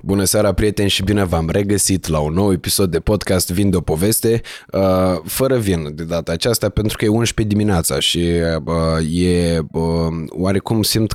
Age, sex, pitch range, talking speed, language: 20-39, male, 85-110 Hz, 185 wpm, Romanian